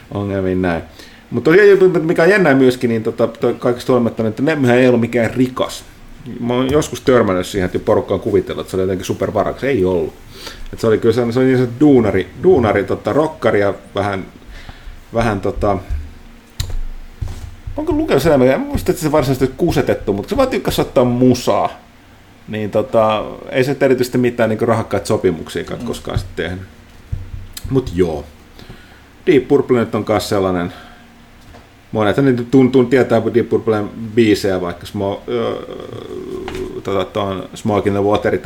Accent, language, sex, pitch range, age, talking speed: native, Finnish, male, 100-125 Hz, 30-49, 155 wpm